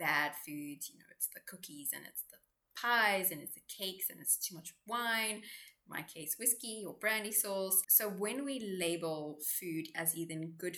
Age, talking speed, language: 20-39, 195 wpm, English